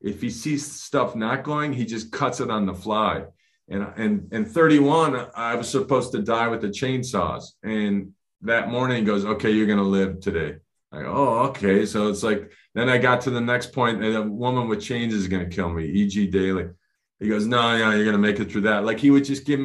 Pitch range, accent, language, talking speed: 105-140 Hz, American, English, 225 wpm